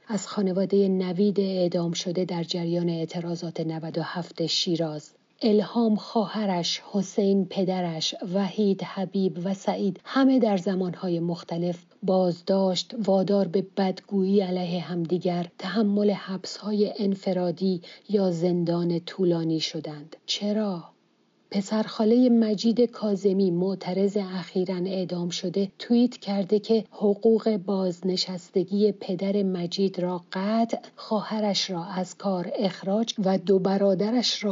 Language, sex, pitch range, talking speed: English, female, 180-210 Hz, 105 wpm